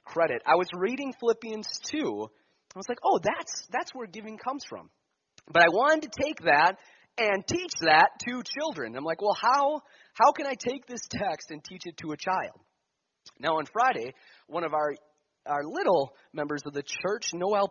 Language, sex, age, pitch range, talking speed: English, male, 30-49, 145-225 Hz, 190 wpm